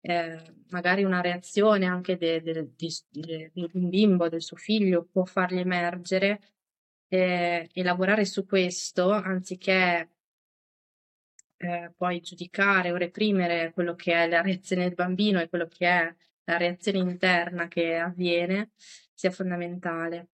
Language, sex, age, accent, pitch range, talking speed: Italian, female, 20-39, native, 175-195 Hz, 130 wpm